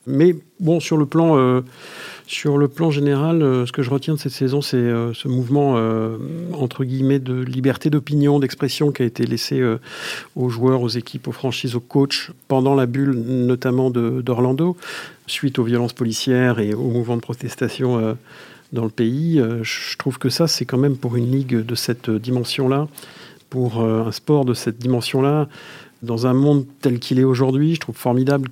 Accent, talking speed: French, 195 wpm